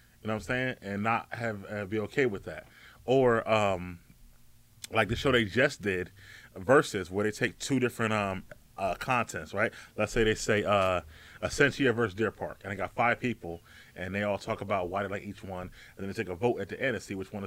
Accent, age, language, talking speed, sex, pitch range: American, 30-49, English, 235 wpm, male, 100-125 Hz